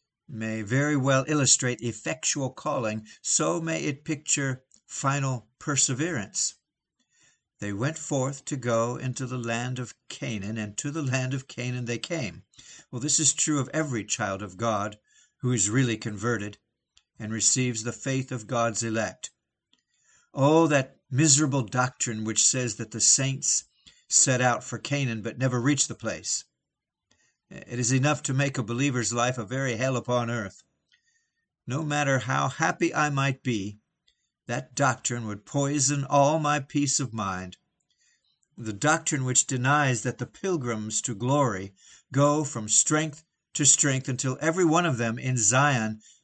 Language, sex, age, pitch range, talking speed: English, male, 60-79, 115-145 Hz, 155 wpm